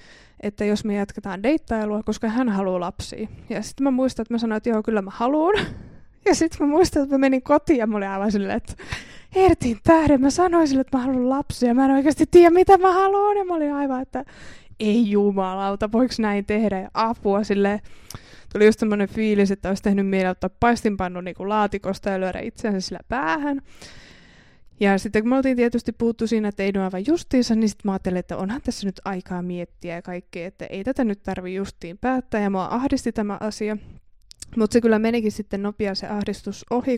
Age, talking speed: 20-39, 210 wpm